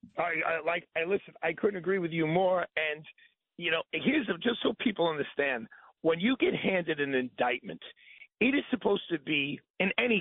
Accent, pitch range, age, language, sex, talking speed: American, 180-240 Hz, 40-59, English, male, 190 wpm